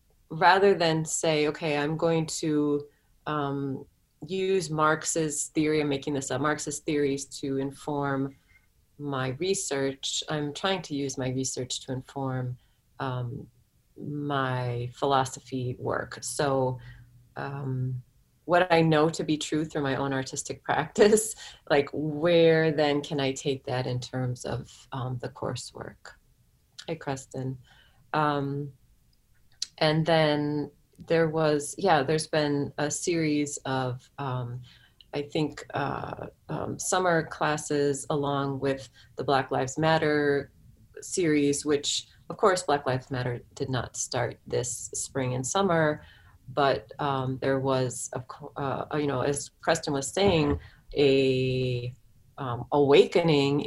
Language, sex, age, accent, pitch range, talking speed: English, female, 30-49, American, 130-150 Hz, 125 wpm